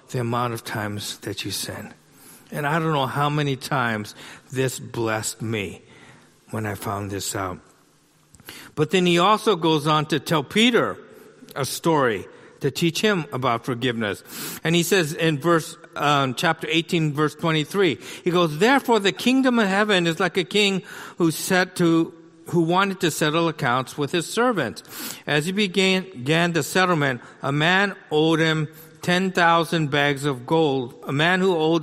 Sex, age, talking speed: male, 50-69, 170 wpm